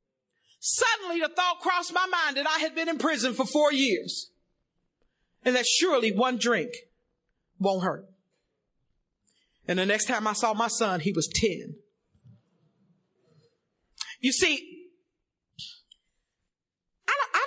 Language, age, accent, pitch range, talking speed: English, 40-59, American, 265-365 Hz, 125 wpm